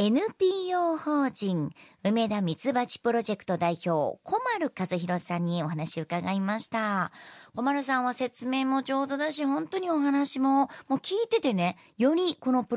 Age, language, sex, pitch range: 40-59, Japanese, male, 205-295 Hz